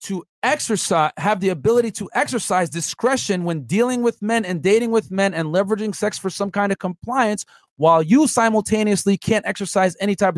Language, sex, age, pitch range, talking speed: English, male, 40-59, 185-240 Hz, 180 wpm